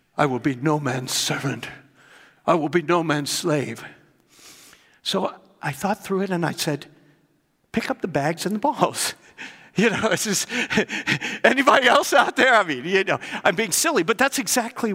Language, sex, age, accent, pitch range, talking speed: English, male, 60-79, American, 195-245 Hz, 180 wpm